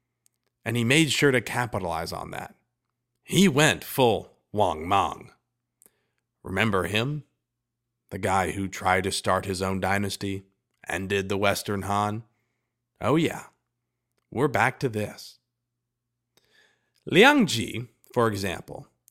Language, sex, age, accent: English, male, 40-59, American